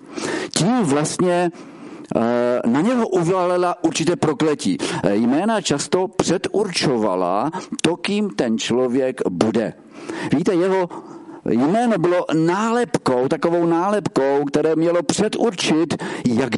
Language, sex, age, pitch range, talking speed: Czech, male, 50-69, 125-175 Hz, 95 wpm